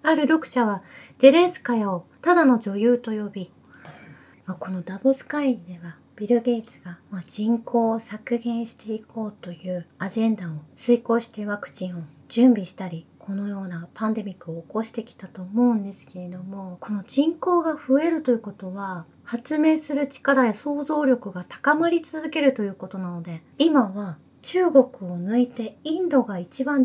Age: 30-49